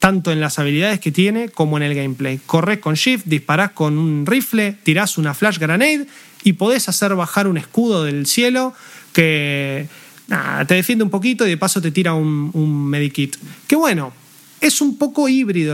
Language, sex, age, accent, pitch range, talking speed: Spanish, male, 30-49, Argentinian, 155-210 Hz, 185 wpm